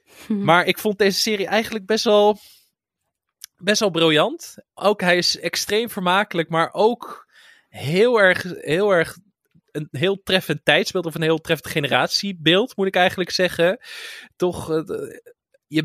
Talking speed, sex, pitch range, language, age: 140 wpm, male, 140-180 Hz, Dutch, 20-39